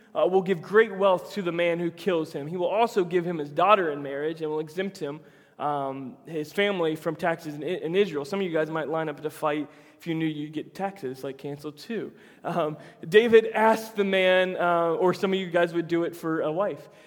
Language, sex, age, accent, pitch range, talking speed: English, male, 20-39, American, 165-220 Hz, 235 wpm